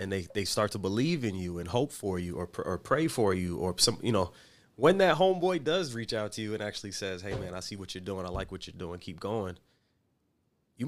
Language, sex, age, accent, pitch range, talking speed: English, male, 30-49, American, 95-115 Hz, 265 wpm